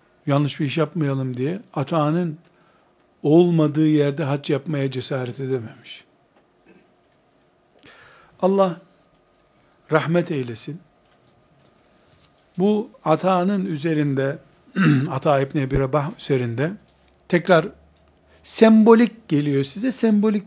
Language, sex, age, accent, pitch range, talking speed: Turkish, male, 60-79, native, 140-185 Hz, 80 wpm